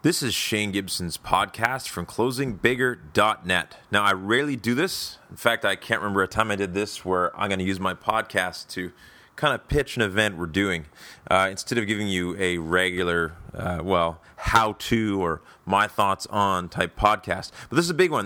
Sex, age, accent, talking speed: male, 30-49, American, 195 wpm